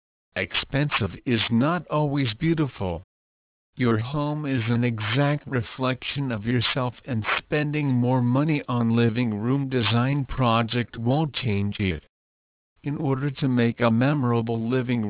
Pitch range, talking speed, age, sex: 105-135 Hz, 125 wpm, 60-79, male